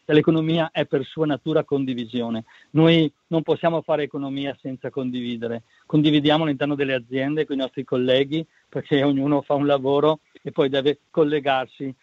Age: 50-69